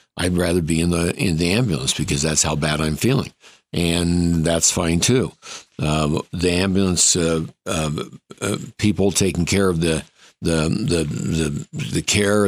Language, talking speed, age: English, 165 wpm, 60-79